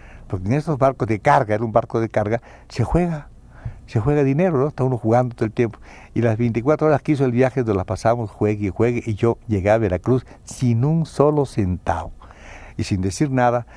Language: Spanish